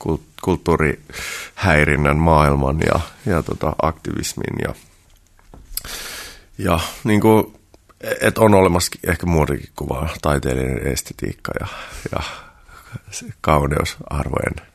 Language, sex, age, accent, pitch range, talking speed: Finnish, male, 30-49, native, 75-85 Hz, 85 wpm